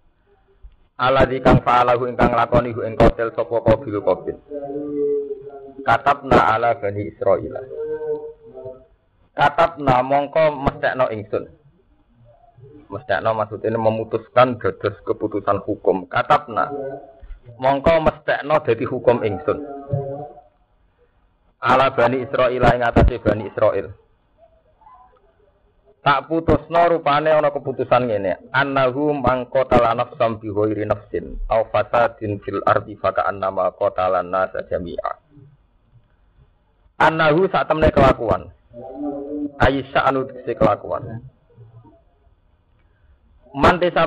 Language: Indonesian